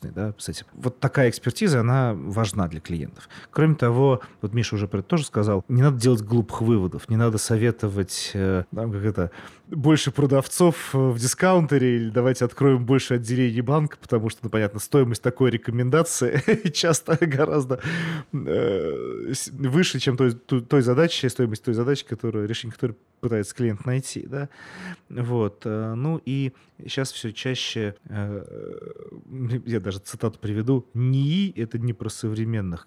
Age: 30-49